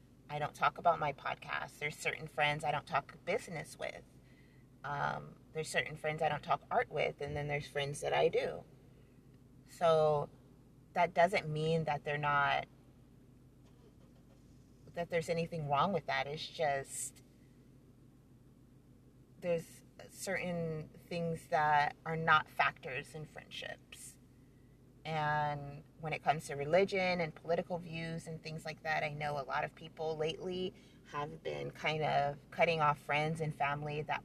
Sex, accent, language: female, American, English